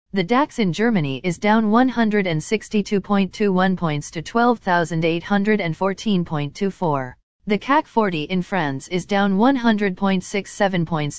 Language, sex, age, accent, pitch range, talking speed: English, female, 40-59, American, 165-225 Hz, 100 wpm